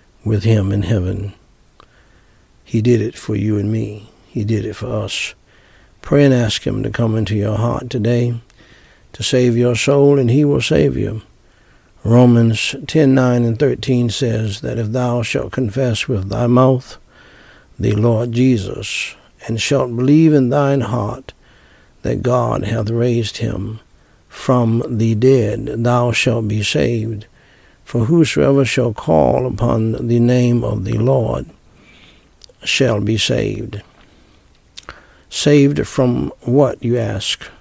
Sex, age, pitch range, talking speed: male, 60-79, 105-125 Hz, 140 wpm